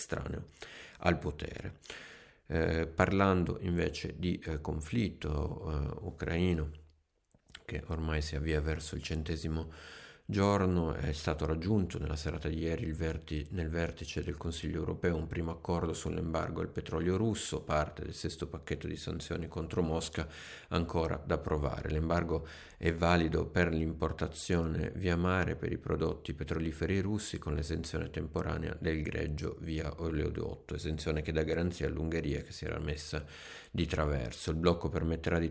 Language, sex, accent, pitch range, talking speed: Italian, male, native, 80-90 Hz, 140 wpm